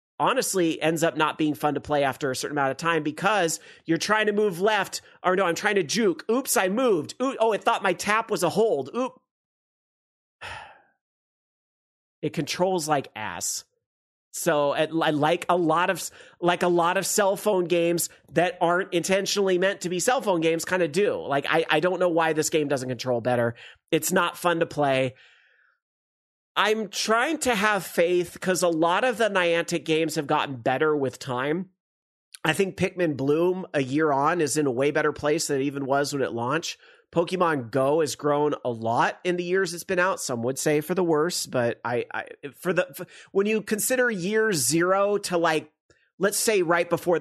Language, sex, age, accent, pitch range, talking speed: English, male, 40-59, American, 150-195 Hz, 195 wpm